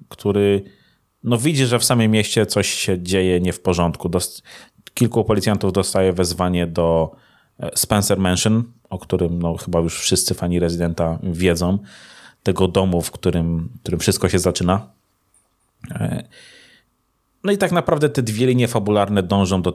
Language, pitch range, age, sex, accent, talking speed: Polish, 90-110 Hz, 30-49, male, native, 135 wpm